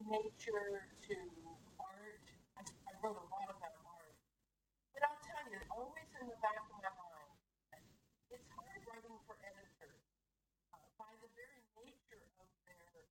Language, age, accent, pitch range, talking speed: English, 50-69, American, 200-235 Hz, 145 wpm